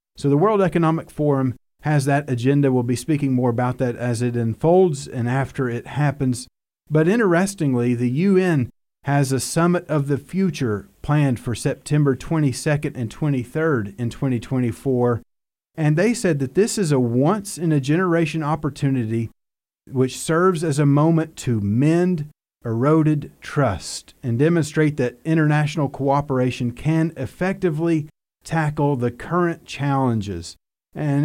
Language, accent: English, American